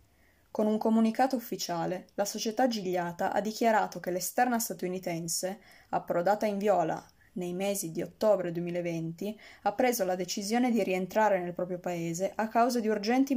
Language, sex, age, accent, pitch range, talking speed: Italian, female, 20-39, native, 180-220 Hz, 150 wpm